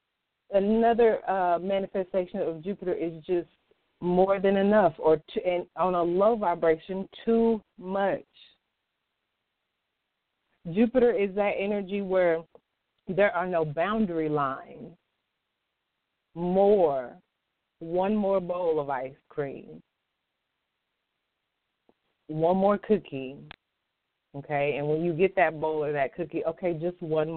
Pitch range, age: 150-195 Hz, 30-49